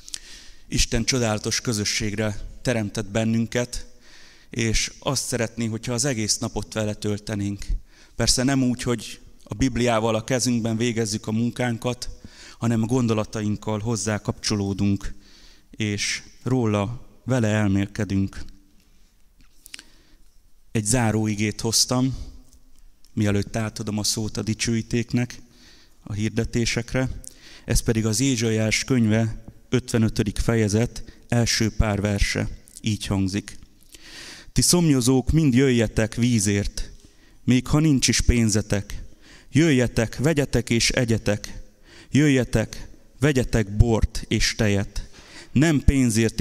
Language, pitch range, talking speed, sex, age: Hungarian, 105-120 Hz, 100 wpm, male, 30-49